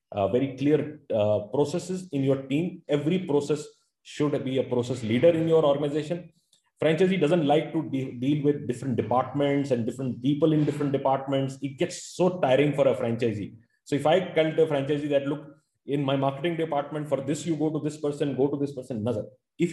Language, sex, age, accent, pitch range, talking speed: English, male, 30-49, Indian, 125-160 Hz, 200 wpm